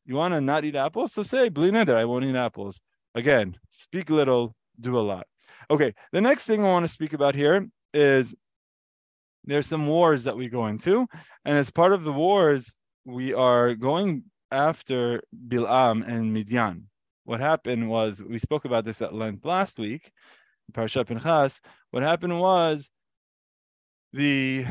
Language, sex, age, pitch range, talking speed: English, male, 20-39, 110-145 Hz, 165 wpm